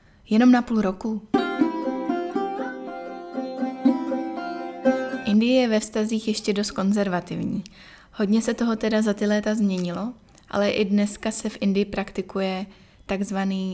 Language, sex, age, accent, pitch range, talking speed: Czech, female, 20-39, native, 195-220 Hz, 120 wpm